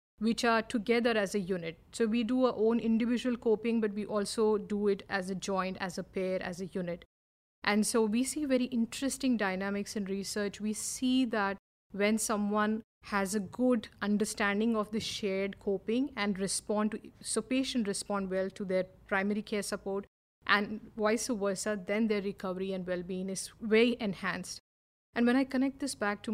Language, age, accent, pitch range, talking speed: English, 50-69, Indian, 195-230 Hz, 180 wpm